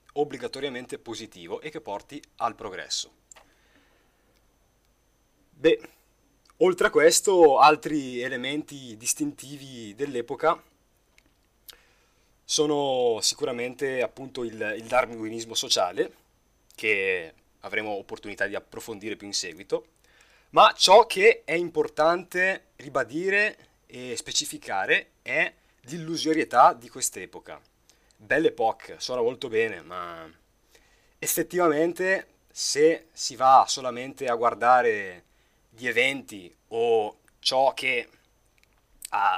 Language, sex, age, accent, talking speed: Italian, male, 30-49, native, 95 wpm